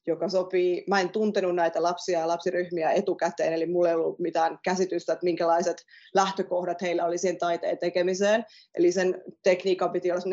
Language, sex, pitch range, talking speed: Finnish, female, 175-200 Hz, 170 wpm